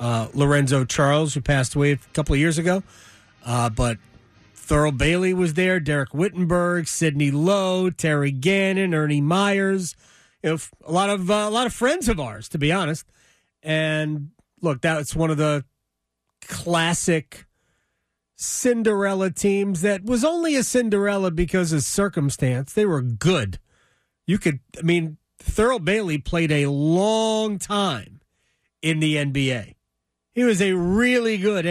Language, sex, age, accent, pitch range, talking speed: English, male, 30-49, American, 125-185 Hz, 150 wpm